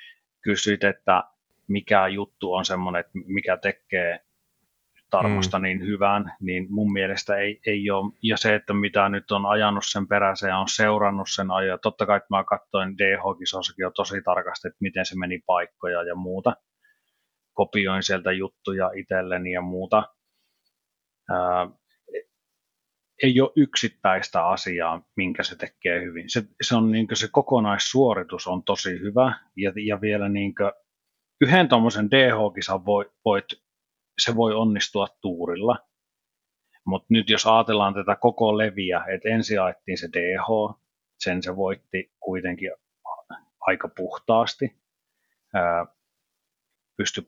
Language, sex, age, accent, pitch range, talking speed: Finnish, male, 30-49, native, 95-110 Hz, 130 wpm